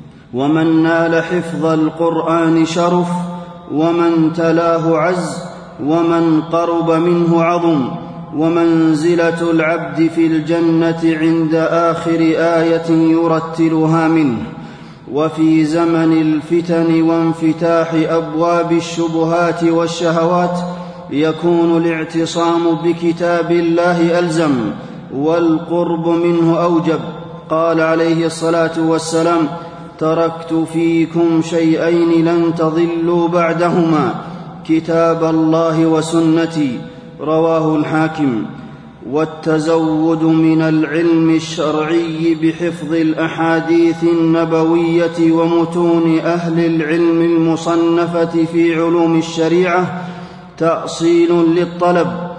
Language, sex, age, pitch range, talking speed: Arabic, male, 30-49, 160-170 Hz, 75 wpm